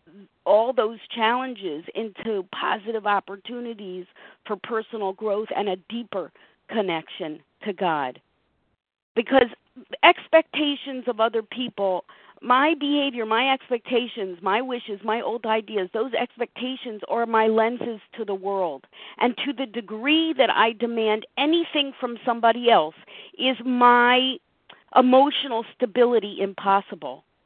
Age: 50-69